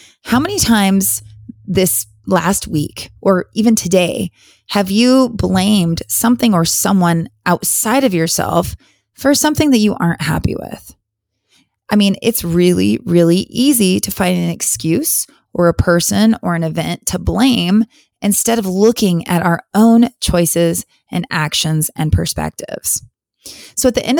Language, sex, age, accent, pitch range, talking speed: English, female, 20-39, American, 165-225 Hz, 145 wpm